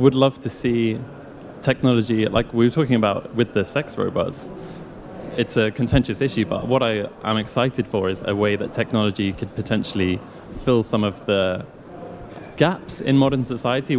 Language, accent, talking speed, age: English, British, 170 wpm, 20-39